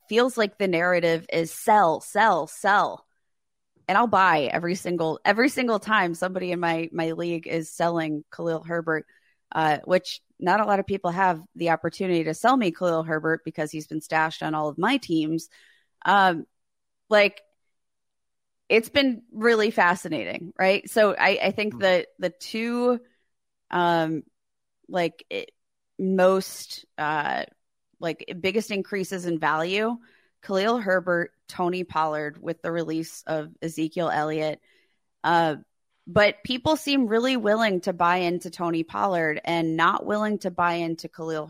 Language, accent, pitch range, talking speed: English, American, 165-200 Hz, 150 wpm